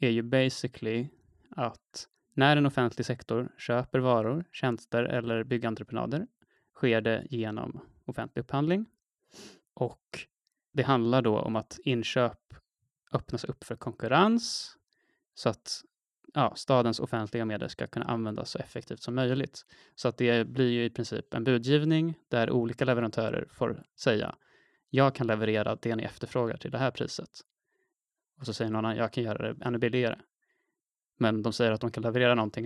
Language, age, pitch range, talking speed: Swedish, 20-39, 115-130 Hz, 155 wpm